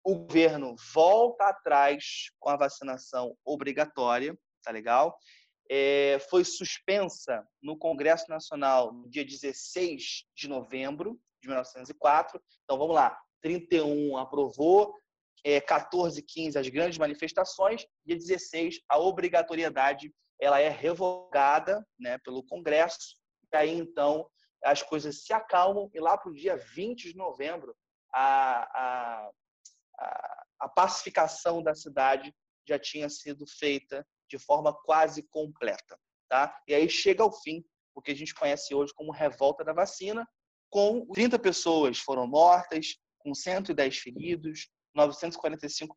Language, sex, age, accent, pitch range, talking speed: Portuguese, male, 20-39, Brazilian, 140-190 Hz, 130 wpm